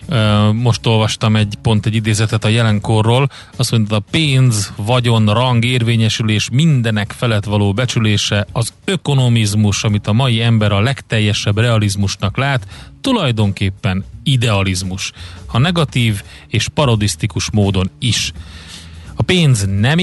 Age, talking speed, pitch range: 30-49, 120 wpm, 100-125 Hz